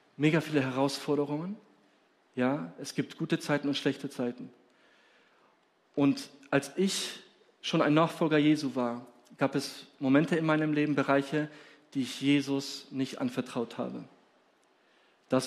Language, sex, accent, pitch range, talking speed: German, male, German, 135-175 Hz, 130 wpm